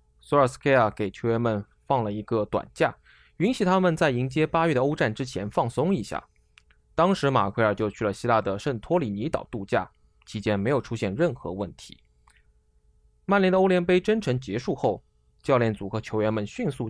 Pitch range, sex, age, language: 105-155 Hz, male, 20-39, Chinese